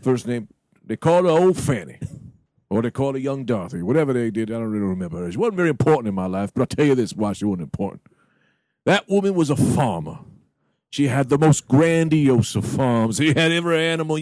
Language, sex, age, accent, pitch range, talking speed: English, male, 50-69, American, 130-175 Hz, 225 wpm